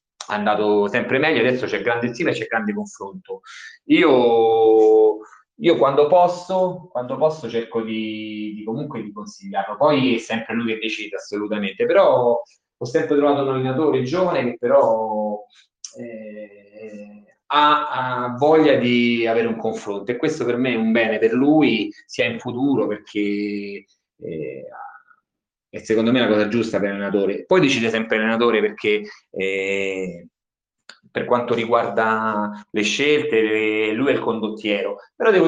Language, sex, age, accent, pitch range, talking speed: Italian, male, 30-49, native, 105-140 Hz, 140 wpm